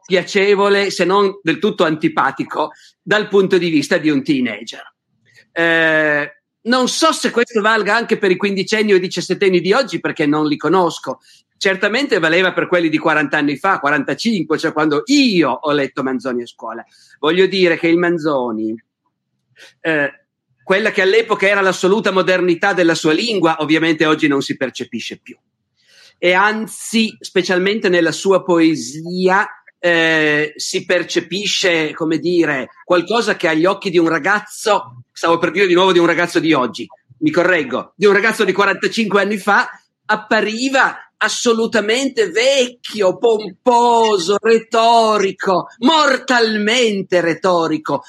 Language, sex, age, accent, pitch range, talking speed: Italian, male, 50-69, native, 160-210 Hz, 140 wpm